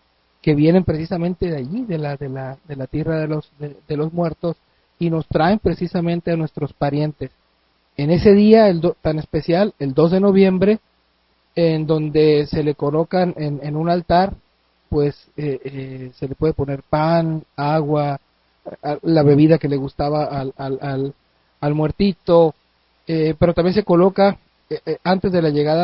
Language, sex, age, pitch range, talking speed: Spanish, male, 40-59, 145-175 Hz, 175 wpm